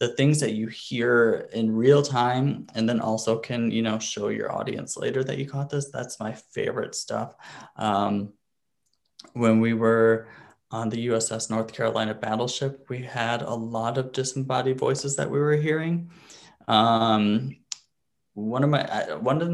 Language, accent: English, American